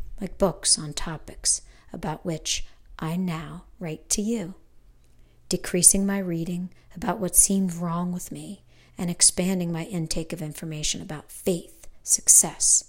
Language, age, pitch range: English, 50-69, 155-185 Hz